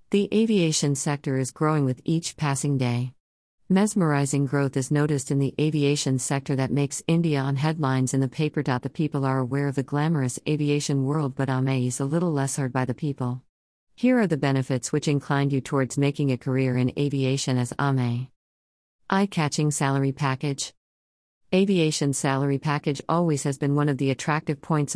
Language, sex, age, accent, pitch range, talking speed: English, female, 50-69, American, 135-150 Hz, 180 wpm